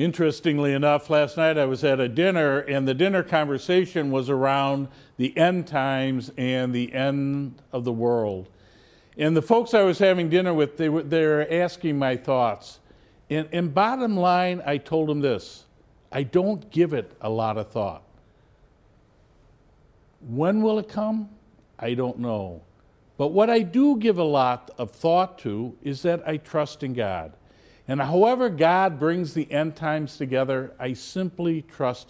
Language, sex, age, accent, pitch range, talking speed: English, male, 50-69, American, 130-175 Hz, 165 wpm